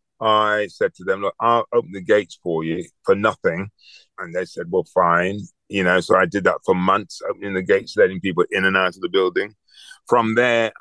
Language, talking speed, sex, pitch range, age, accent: English, 215 wpm, male, 95-125 Hz, 40-59, British